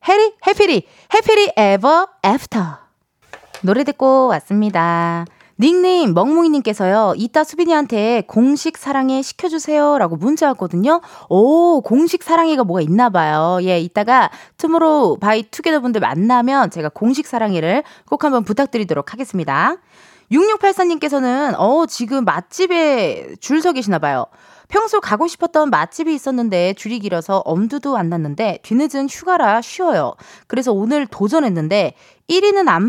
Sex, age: female, 20-39